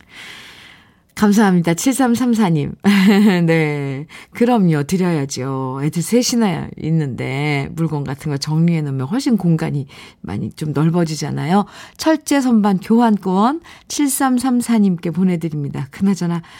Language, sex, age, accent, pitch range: Korean, female, 50-69, native, 165-240 Hz